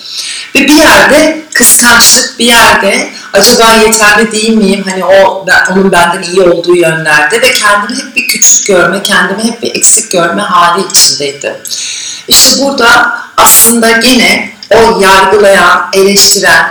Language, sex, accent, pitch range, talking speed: Turkish, female, native, 185-235 Hz, 135 wpm